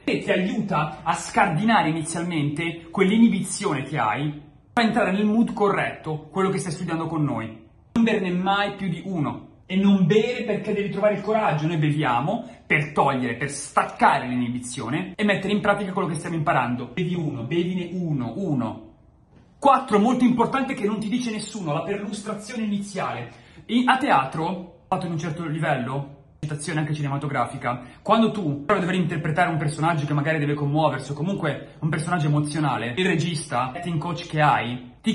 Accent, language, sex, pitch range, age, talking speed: native, Italian, male, 150-195 Hz, 30-49, 165 wpm